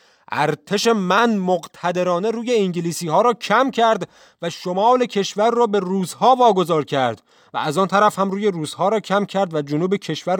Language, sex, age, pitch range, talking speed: Persian, male, 30-49, 155-215 Hz, 175 wpm